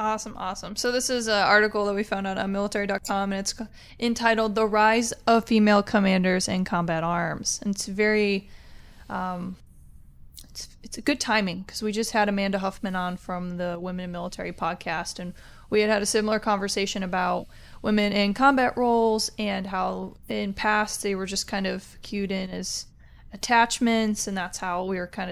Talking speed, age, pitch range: 180 wpm, 20-39, 190-215 Hz